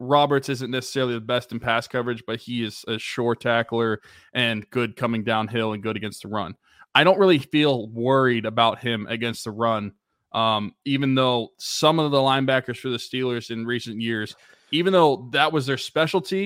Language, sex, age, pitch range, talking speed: English, male, 20-39, 115-135 Hz, 190 wpm